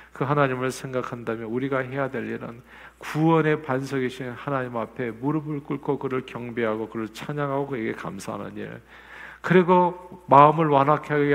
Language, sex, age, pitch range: Korean, male, 50-69, 110-145 Hz